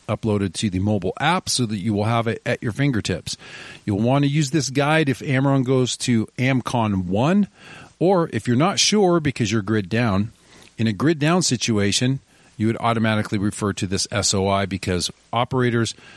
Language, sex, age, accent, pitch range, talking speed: English, male, 40-59, American, 100-130 Hz, 180 wpm